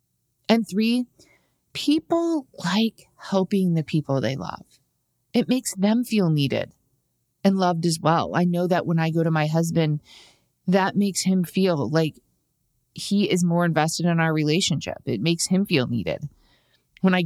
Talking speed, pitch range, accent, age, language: 160 wpm, 150-190 Hz, American, 30-49, English